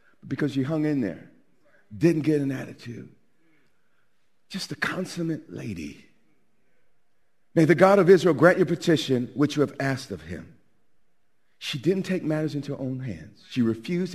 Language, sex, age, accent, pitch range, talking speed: English, male, 40-59, American, 120-170 Hz, 155 wpm